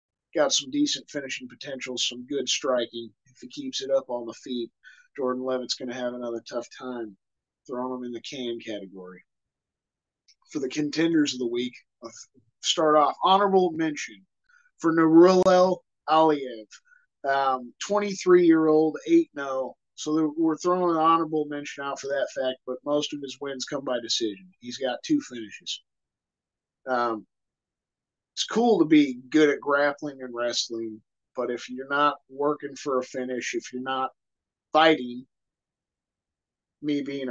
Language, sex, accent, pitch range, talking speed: English, male, American, 125-170 Hz, 155 wpm